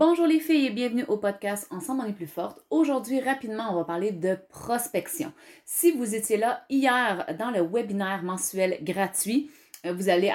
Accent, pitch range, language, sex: Canadian, 175-245 Hz, French, female